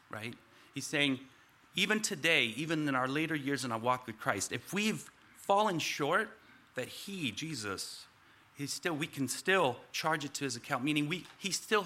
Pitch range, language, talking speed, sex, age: 120-155 Hz, English, 175 wpm, male, 40-59